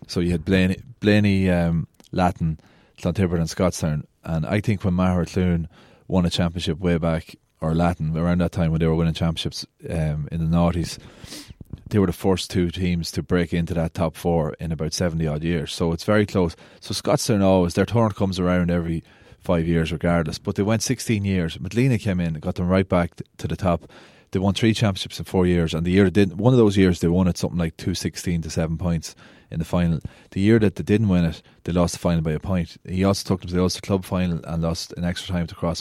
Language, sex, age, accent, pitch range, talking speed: English, male, 30-49, Irish, 85-95 Hz, 235 wpm